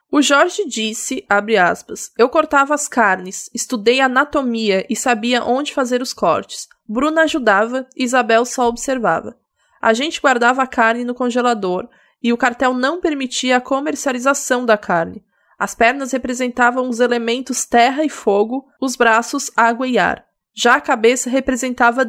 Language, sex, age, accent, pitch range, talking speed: Portuguese, female, 20-39, Brazilian, 230-280 Hz, 150 wpm